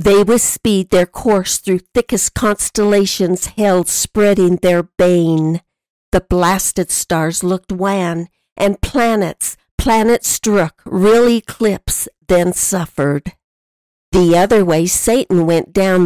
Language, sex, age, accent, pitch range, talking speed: English, female, 60-79, American, 170-205 Hz, 115 wpm